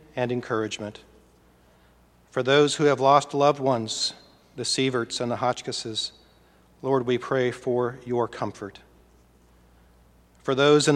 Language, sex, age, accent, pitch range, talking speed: English, male, 40-59, American, 115-145 Hz, 125 wpm